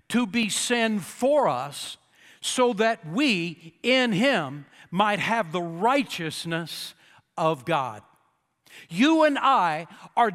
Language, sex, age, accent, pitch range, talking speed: English, male, 60-79, American, 170-235 Hz, 115 wpm